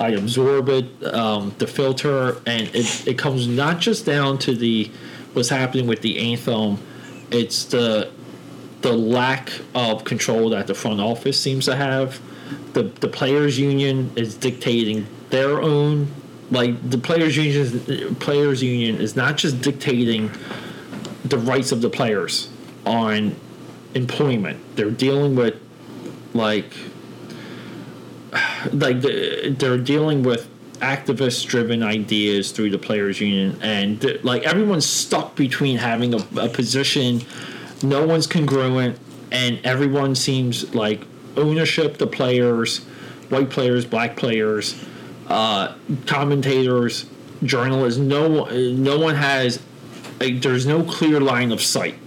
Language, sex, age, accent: English, male, 40-59, American